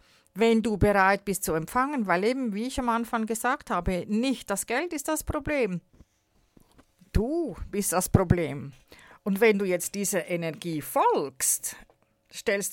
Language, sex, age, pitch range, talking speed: German, female, 50-69, 195-260 Hz, 150 wpm